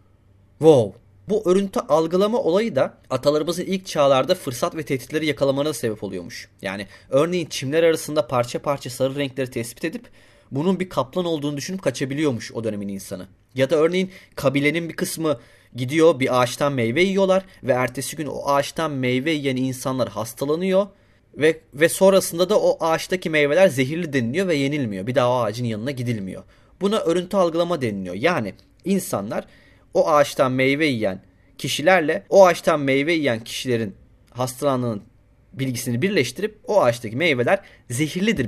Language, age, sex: Turkish, 30-49, male